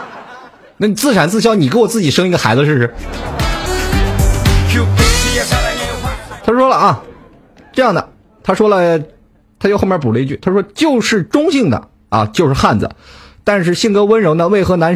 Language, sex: Chinese, male